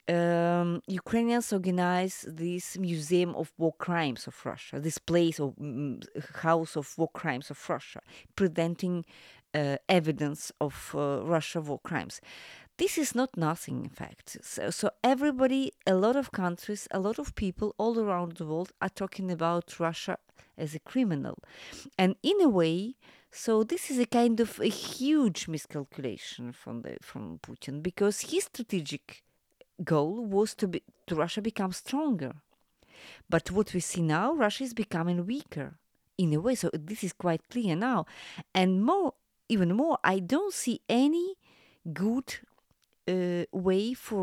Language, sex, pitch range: English, female, 165-230 Hz